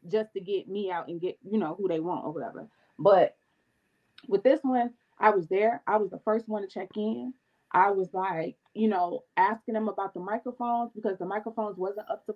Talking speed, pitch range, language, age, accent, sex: 220 wpm, 190-260 Hz, English, 20-39, American, female